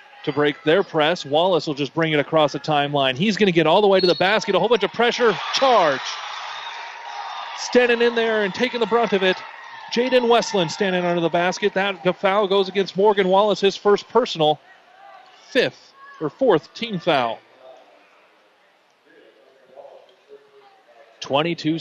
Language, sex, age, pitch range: English, male, 30-49, 170-235 Hz